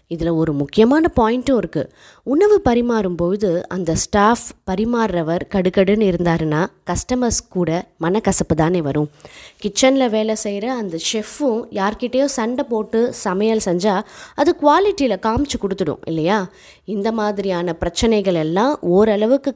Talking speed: 110 wpm